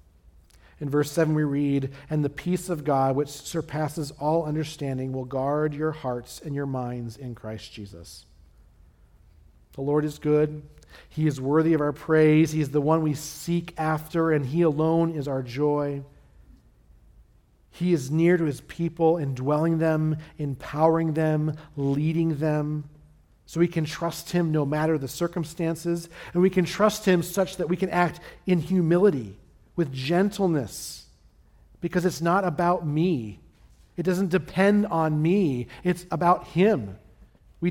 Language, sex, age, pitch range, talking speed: English, male, 40-59, 125-165 Hz, 155 wpm